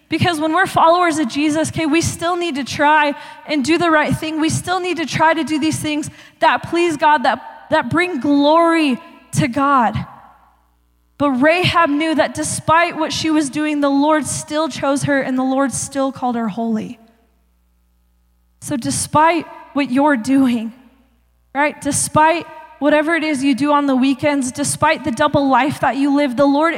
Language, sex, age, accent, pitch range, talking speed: English, female, 20-39, American, 255-310 Hz, 180 wpm